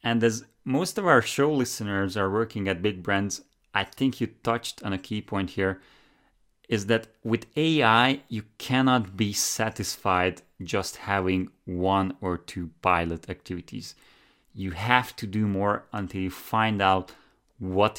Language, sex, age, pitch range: English, male, 30-49, 95-115 Hz